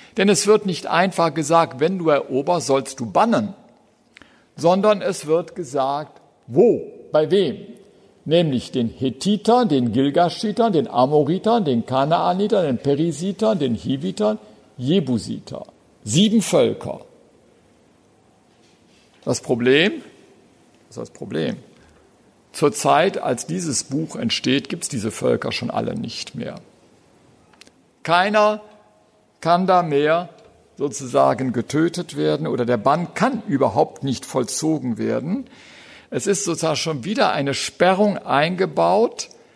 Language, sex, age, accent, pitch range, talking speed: German, male, 60-79, German, 135-200 Hz, 120 wpm